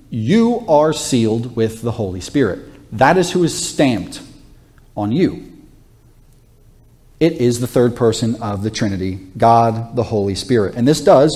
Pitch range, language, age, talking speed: 115-140 Hz, English, 40-59, 155 wpm